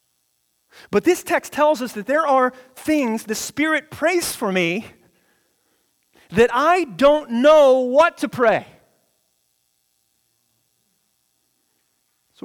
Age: 30-49